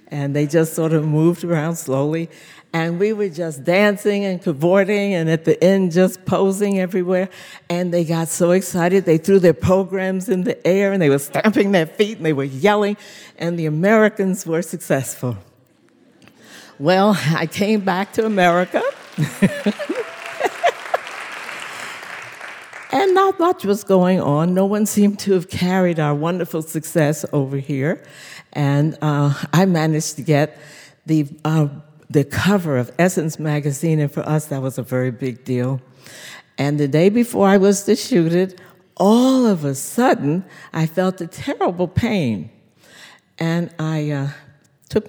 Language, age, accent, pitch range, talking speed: English, 60-79, American, 155-195 Hz, 155 wpm